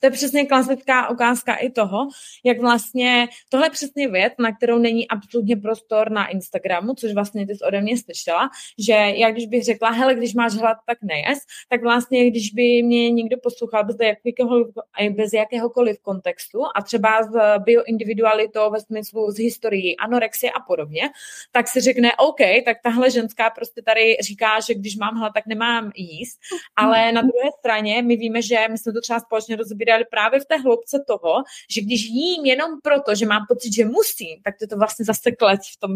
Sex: female